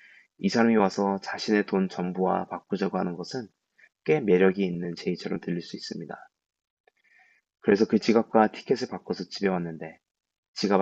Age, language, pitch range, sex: 20-39, Korean, 90-110 Hz, male